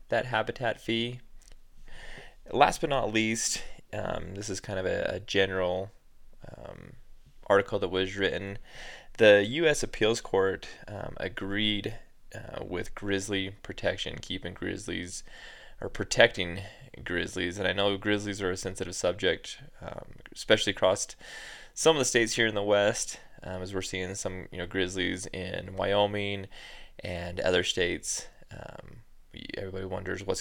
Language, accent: English, American